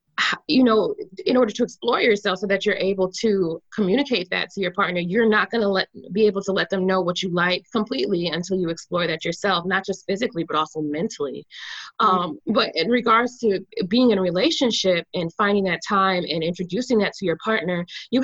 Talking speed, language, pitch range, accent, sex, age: 205 wpm, English, 185-235 Hz, American, female, 20-39